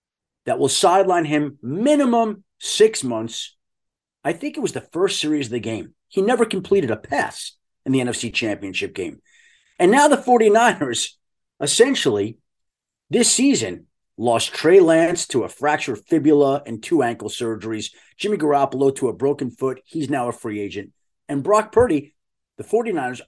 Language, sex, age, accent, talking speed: English, male, 40-59, American, 155 wpm